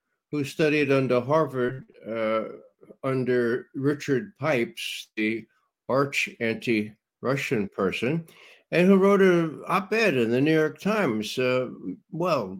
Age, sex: 60-79, male